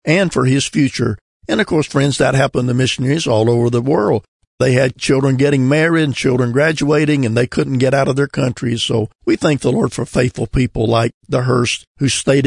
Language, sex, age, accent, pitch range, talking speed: English, male, 50-69, American, 130-155 Hz, 215 wpm